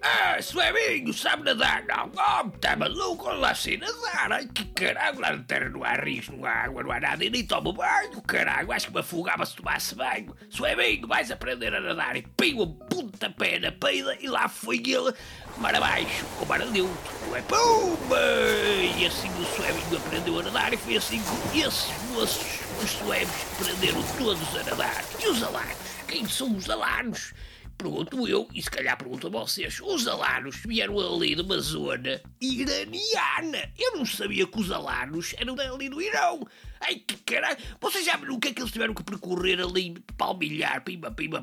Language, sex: English, male